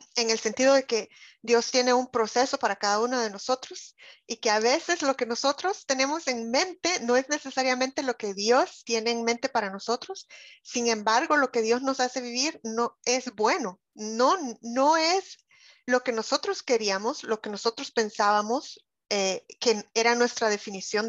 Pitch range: 210-260 Hz